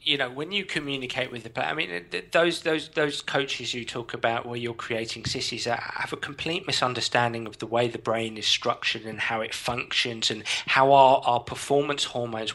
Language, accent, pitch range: English, British, 120-150 Hz